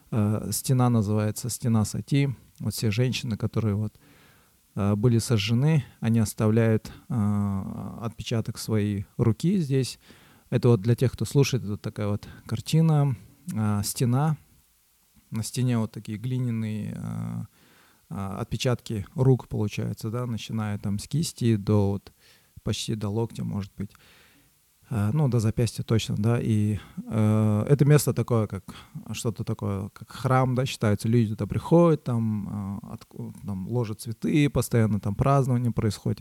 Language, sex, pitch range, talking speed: Russian, male, 105-125 Hz, 130 wpm